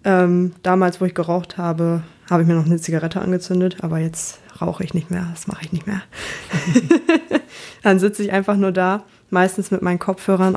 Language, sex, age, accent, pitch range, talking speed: German, female, 20-39, German, 170-200 Hz, 195 wpm